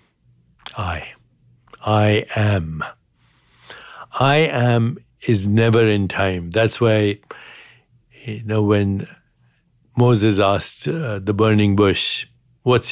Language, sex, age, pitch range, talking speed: English, male, 60-79, 100-120 Hz, 100 wpm